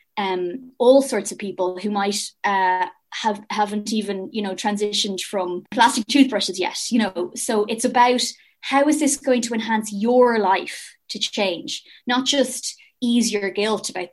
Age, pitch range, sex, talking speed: 20-39, 200-245 Hz, female, 165 wpm